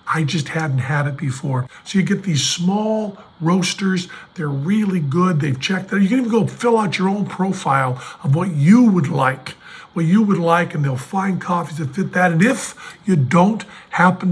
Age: 50-69